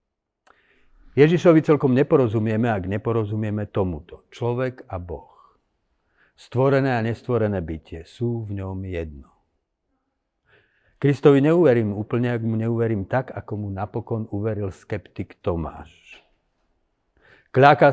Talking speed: 105 wpm